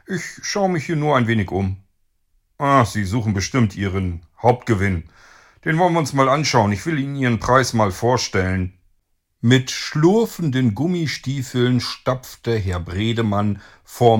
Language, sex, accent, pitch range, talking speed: German, male, German, 95-130 Hz, 145 wpm